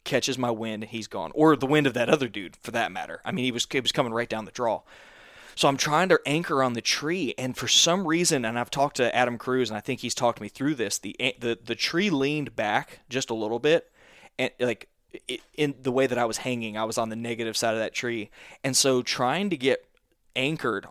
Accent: American